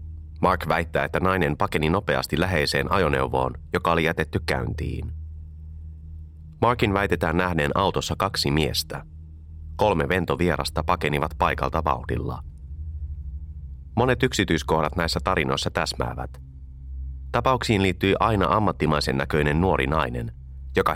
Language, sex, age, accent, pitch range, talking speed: Finnish, male, 30-49, native, 70-95 Hz, 105 wpm